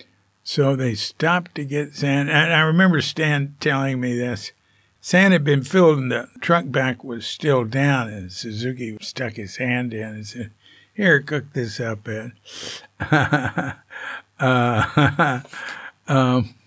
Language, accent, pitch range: English, American, 105-135 Hz